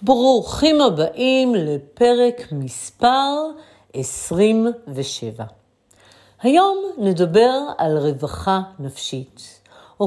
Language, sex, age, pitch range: Hebrew, female, 50-69, 155-225 Hz